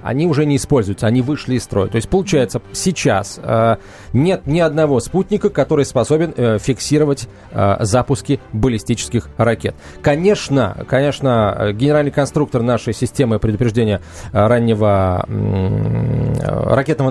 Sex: male